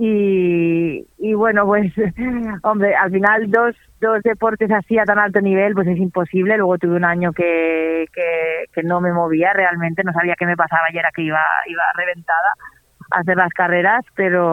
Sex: female